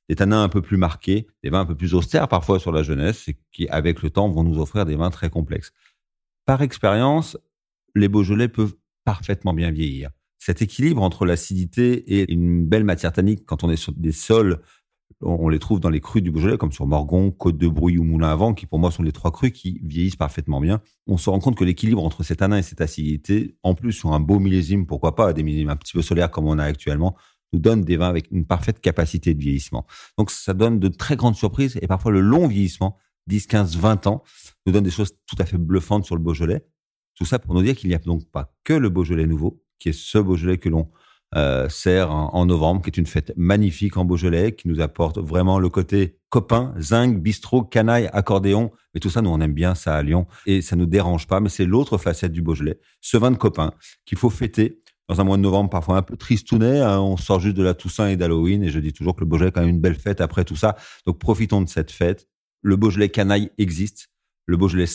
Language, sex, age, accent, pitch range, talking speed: French, male, 40-59, French, 85-105 Hz, 240 wpm